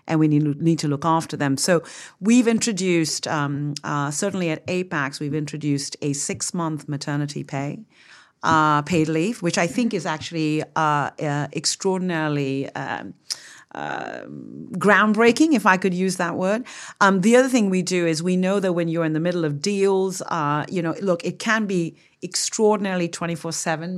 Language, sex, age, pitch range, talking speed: English, female, 40-59, 155-190 Hz, 170 wpm